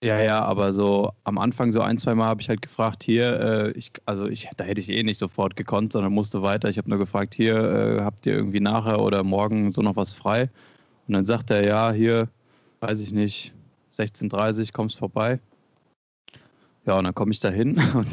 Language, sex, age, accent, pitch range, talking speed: German, male, 20-39, German, 105-120 Hz, 220 wpm